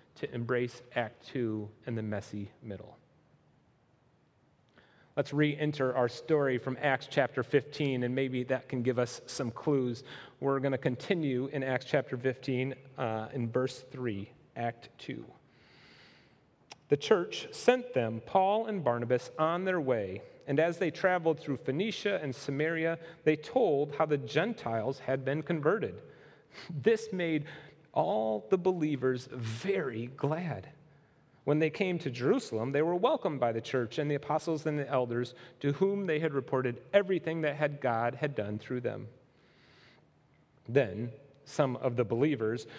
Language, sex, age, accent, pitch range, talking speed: English, male, 30-49, American, 125-155 Hz, 150 wpm